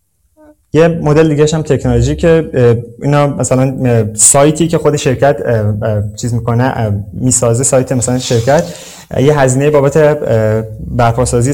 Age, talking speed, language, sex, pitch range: 20-39, 115 wpm, Persian, male, 115-145 Hz